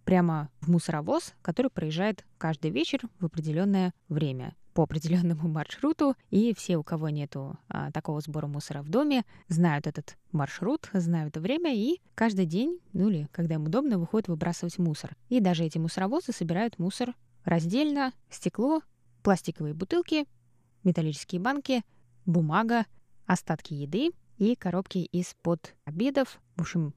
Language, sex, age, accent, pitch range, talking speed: Russian, female, 20-39, native, 160-205 Hz, 135 wpm